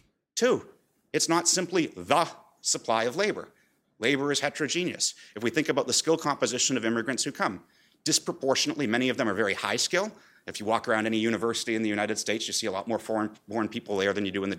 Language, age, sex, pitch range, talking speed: English, 30-49, male, 110-145 Hz, 220 wpm